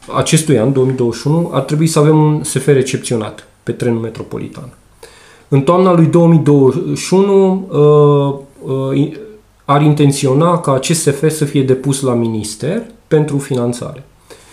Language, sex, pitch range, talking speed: Romanian, male, 130-160 Hz, 120 wpm